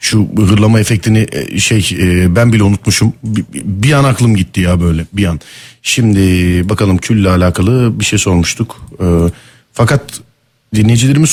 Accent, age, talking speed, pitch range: native, 40-59, 130 wpm, 100-130 Hz